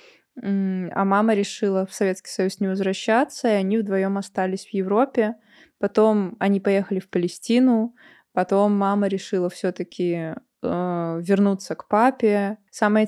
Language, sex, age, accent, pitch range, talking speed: Russian, female, 20-39, native, 190-220 Hz, 130 wpm